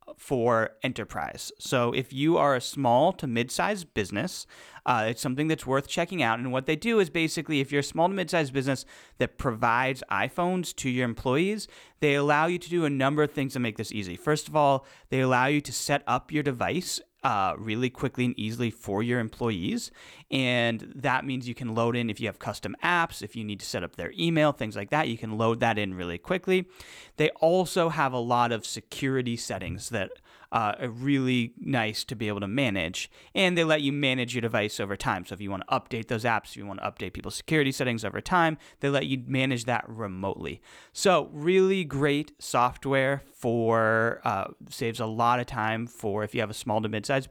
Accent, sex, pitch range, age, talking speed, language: American, male, 115-150 Hz, 30-49, 215 wpm, English